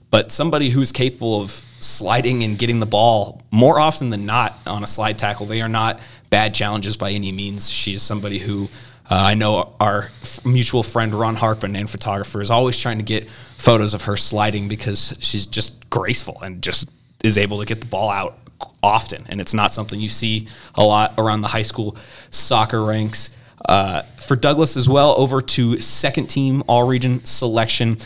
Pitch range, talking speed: 105-125 Hz, 190 wpm